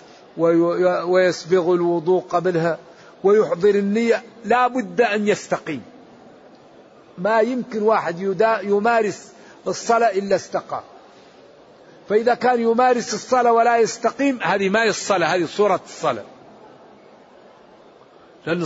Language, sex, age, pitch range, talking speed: Arabic, male, 50-69, 170-215 Hz, 95 wpm